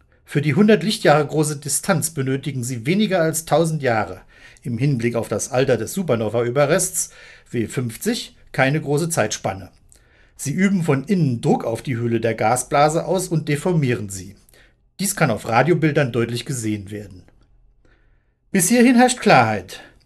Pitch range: 120-165 Hz